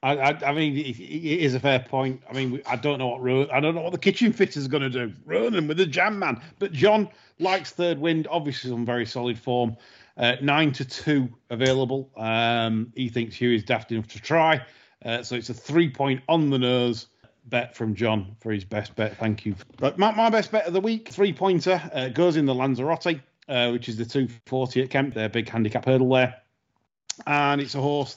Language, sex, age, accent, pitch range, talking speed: English, male, 40-59, British, 120-140 Hz, 215 wpm